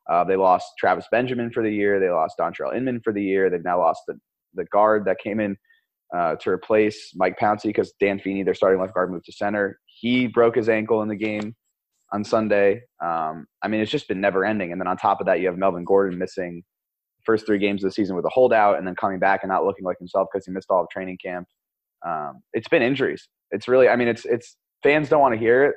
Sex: male